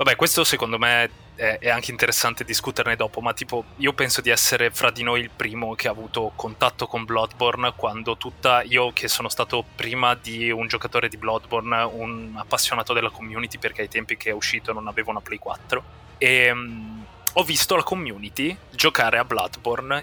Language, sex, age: Italian, male, 20-39